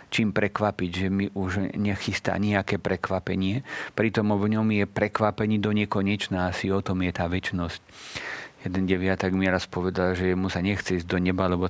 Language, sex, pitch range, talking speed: Slovak, male, 90-100 Hz, 170 wpm